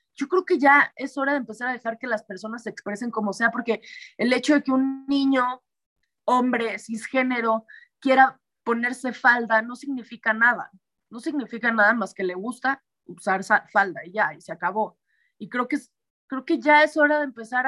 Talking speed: 195 wpm